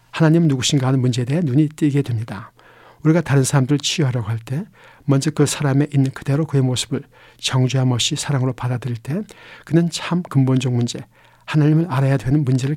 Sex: male